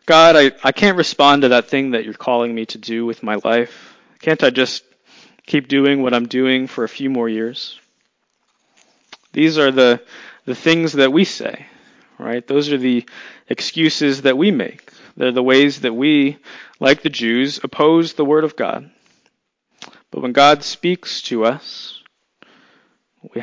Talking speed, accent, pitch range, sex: 170 wpm, American, 120-150 Hz, male